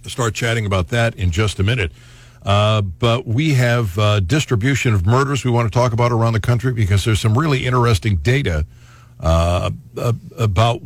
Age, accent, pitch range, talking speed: 60-79, American, 100-125 Hz, 180 wpm